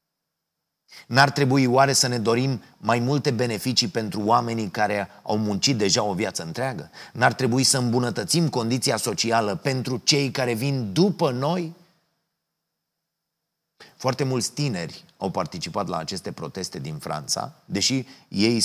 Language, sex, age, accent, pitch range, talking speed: Romanian, male, 30-49, native, 100-145 Hz, 135 wpm